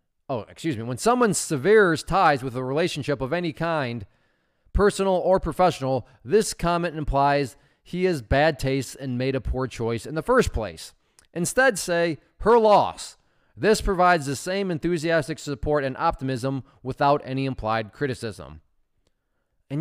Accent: American